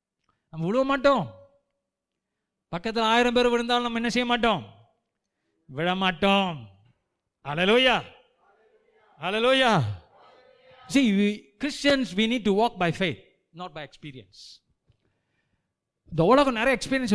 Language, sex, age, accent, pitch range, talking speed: Tamil, male, 50-69, native, 130-205 Hz, 55 wpm